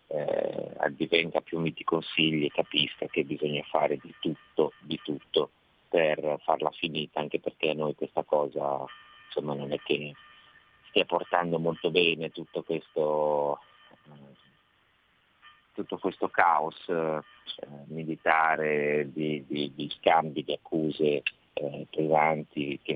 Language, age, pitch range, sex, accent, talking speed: Italian, 30-49, 75-85 Hz, male, native, 125 wpm